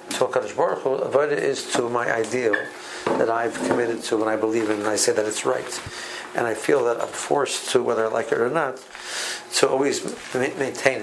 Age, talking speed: 60-79, 220 wpm